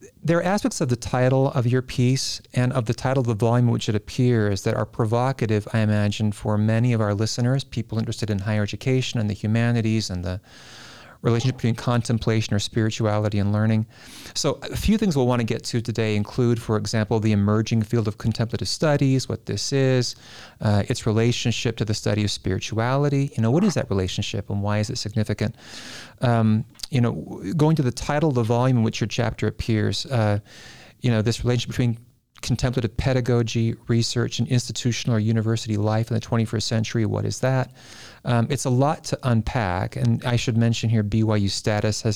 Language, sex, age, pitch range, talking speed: English, male, 30-49, 110-125 Hz, 195 wpm